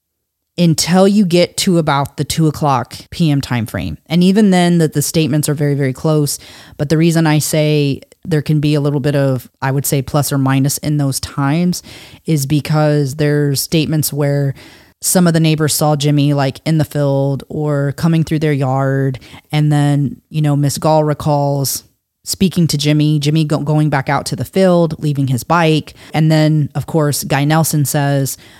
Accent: American